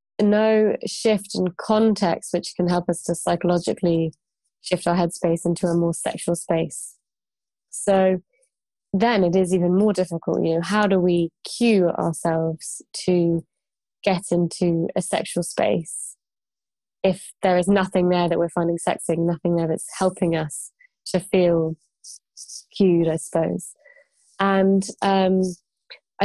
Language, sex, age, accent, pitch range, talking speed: English, female, 20-39, British, 170-195 Hz, 135 wpm